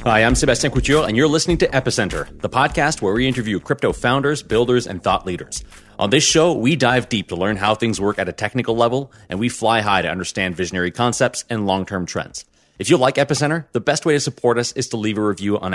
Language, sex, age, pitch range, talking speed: English, male, 30-49, 100-135 Hz, 235 wpm